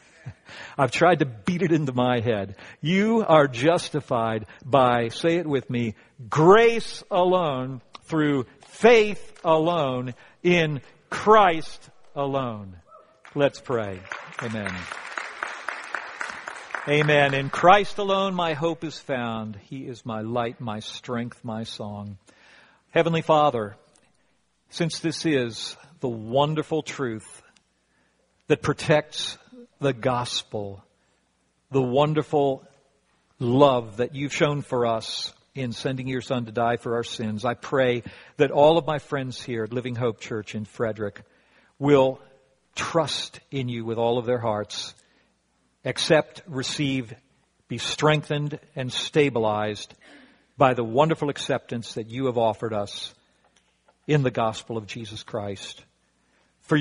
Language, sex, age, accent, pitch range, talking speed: English, male, 50-69, American, 115-150 Hz, 125 wpm